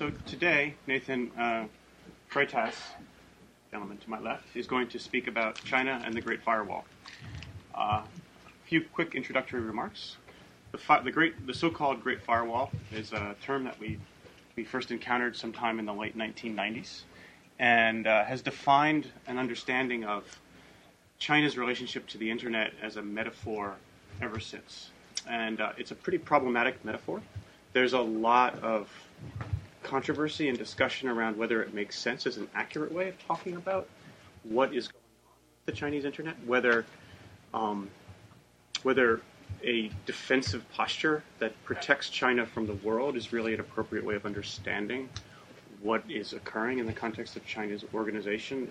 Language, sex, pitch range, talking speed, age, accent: English, male, 110-130 Hz, 155 wpm, 30-49, American